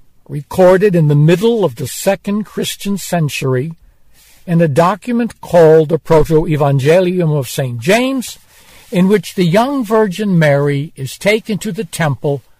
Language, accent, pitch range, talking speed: Ukrainian, American, 145-200 Hz, 140 wpm